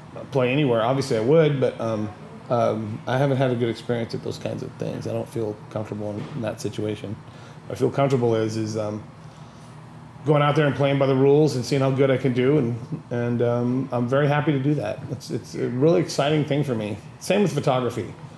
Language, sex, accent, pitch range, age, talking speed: English, male, American, 120-145 Hz, 30-49, 225 wpm